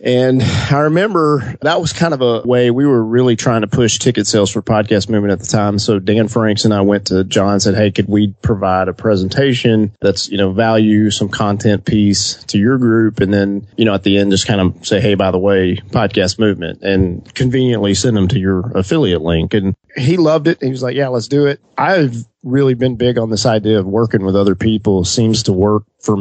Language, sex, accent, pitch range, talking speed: English, male, American, 100-130 Hz, 235 wpm